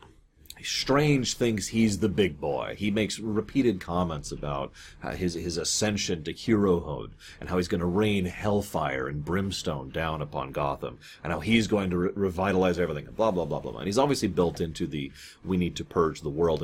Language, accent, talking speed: English, American, 200 wpm